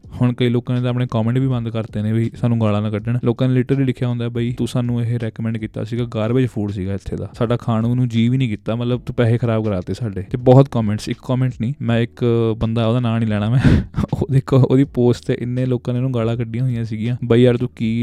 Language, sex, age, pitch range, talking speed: Punjabi, male, 20-39, 110-125 Hz, 265 wpm